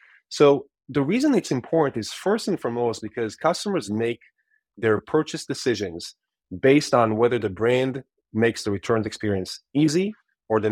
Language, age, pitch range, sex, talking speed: English, 30-49, 110-155 Hz, male, 150 wpm